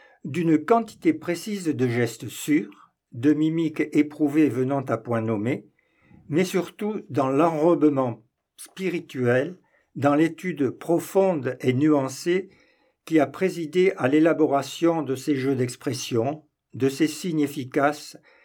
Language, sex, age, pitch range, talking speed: French, male, 60-79, 130-170 Hz, 115 wpm